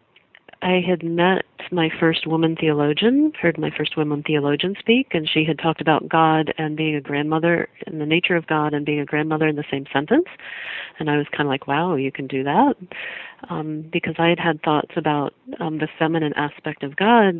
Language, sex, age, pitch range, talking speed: English, female, 40-59, 155-205 Hz, 205 wpm